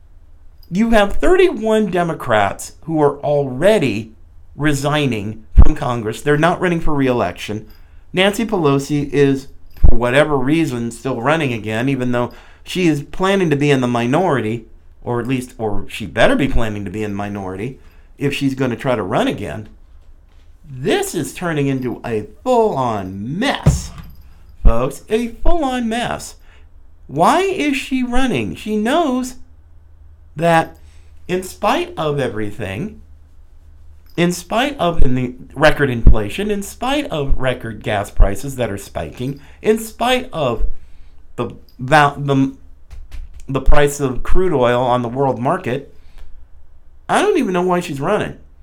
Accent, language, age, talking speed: American, English, 50-69, 140 wpm